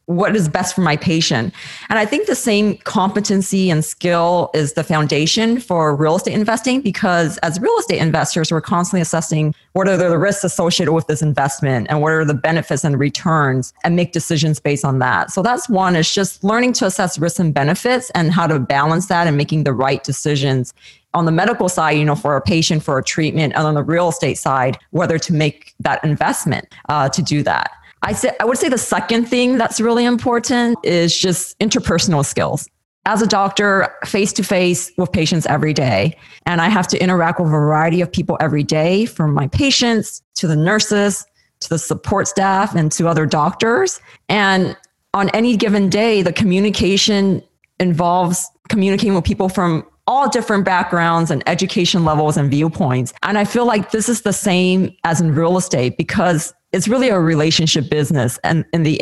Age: 30-49